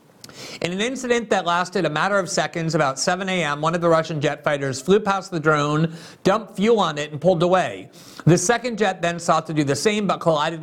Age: 40-59